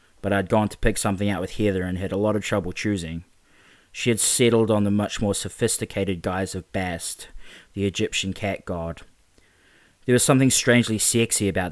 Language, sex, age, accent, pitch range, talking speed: English, male, 20-39, Australian, 90-105 Hz, 190 wpm